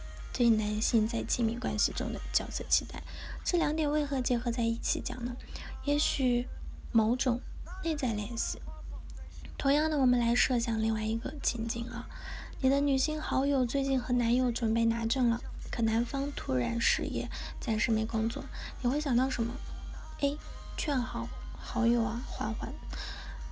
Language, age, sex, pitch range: Chinese, 10-29, female, 225-270 Hz